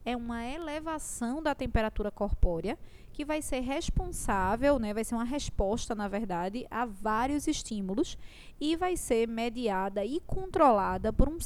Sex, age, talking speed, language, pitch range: female, 20-39, 145 wpm, Portuguese, 220-295 Hz